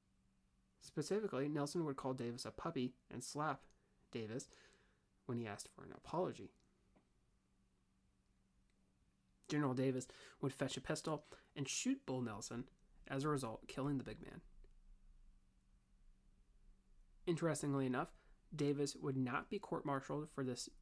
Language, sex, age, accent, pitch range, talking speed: English, male, 30-49, American, 120-140 Hz, 120 wpm